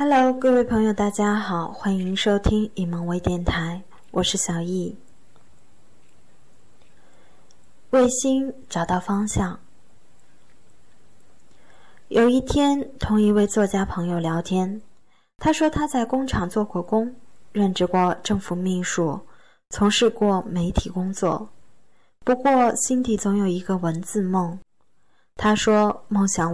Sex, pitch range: female, 175-220 Hz